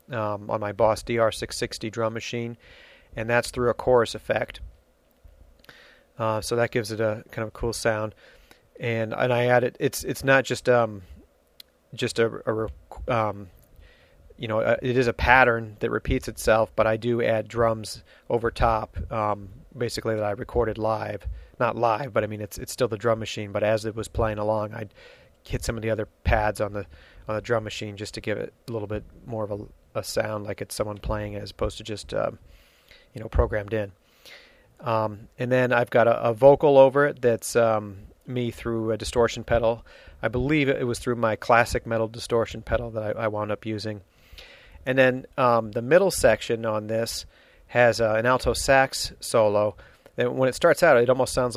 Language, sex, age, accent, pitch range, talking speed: English, male, 30-49, American, 105-120 Hz, 200 wpm